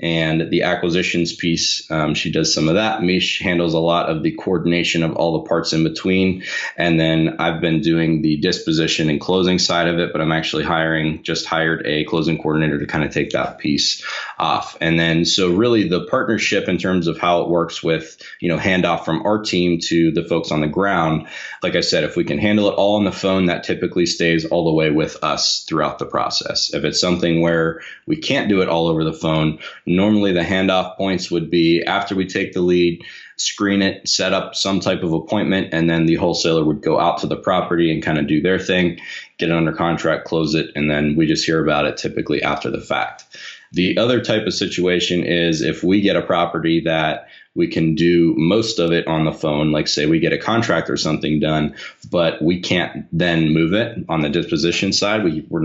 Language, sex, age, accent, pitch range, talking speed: English, male, 20-39, American, 80-90 Hz, 220 wpm